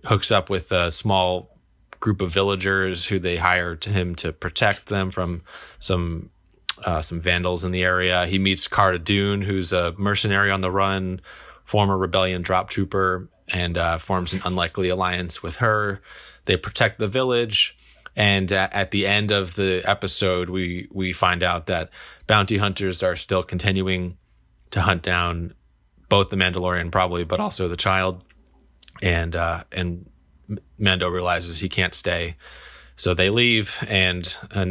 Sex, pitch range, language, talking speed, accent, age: male, 90-100 Hz, English, 155 wpm, American, 20-39